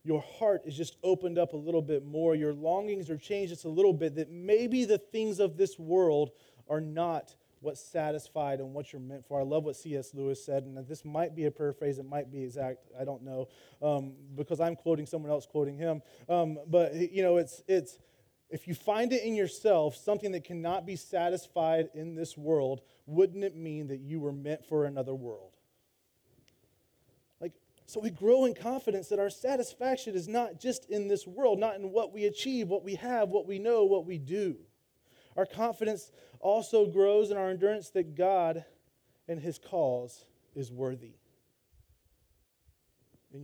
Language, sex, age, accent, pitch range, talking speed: English, male, 30-49, American, 145-195 Hz, 185 wpm